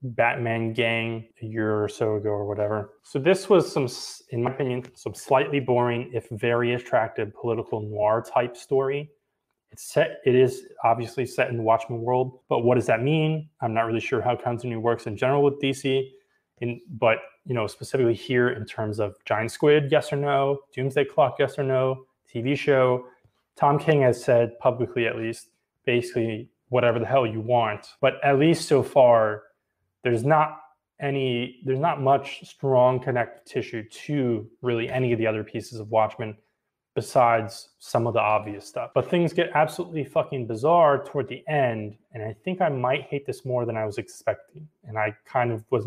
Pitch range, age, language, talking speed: 115-140 Hz, 20-39, English, 185 wpm